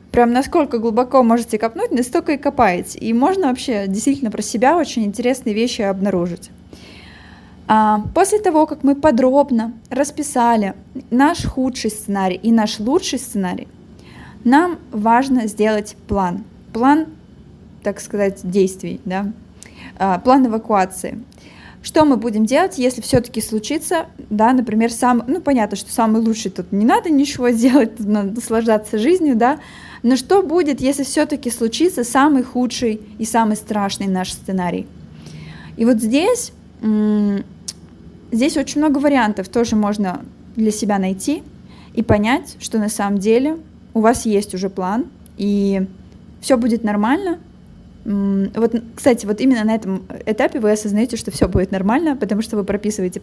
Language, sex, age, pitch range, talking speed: Russian, female, 20-39, 210-265 Hz, 140 wpm